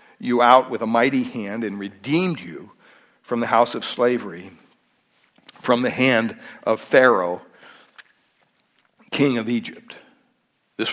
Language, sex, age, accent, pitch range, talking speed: English, male, 60-79, American, 120-170 Hz, 125 wpm